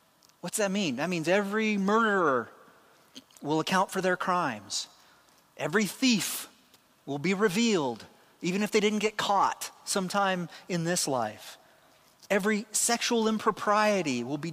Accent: American